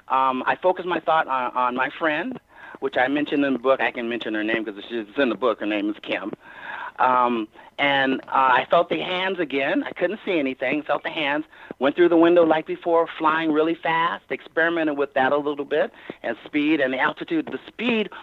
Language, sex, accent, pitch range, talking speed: English, male, American, 130-180 Hz, 215 wpm